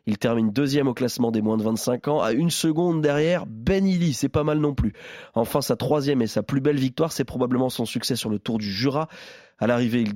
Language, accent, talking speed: French, French, 235 wpm